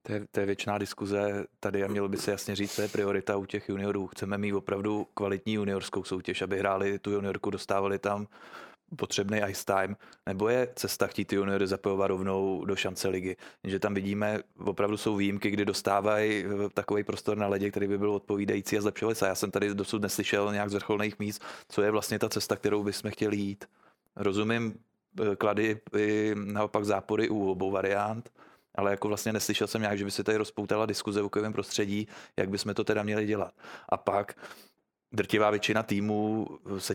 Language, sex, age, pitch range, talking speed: Czech, male, 20-39, 100-105 Hz, 185 wpm